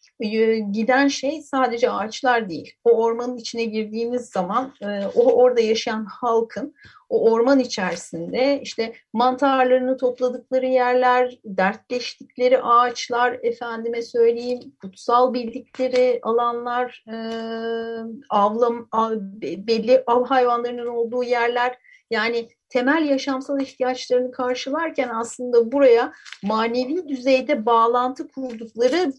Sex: female